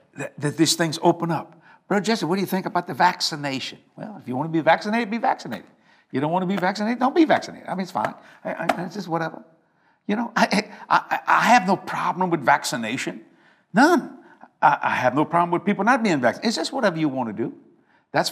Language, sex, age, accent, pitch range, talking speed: English, male, 60-79, American, 135-180 Hz, 225 wpm